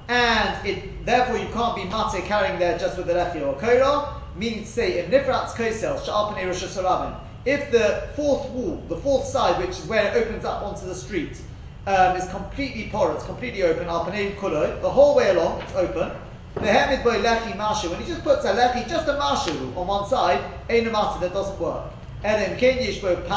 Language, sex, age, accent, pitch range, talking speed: English, male, 30-49, British, 180-245 Hz, 180 wpm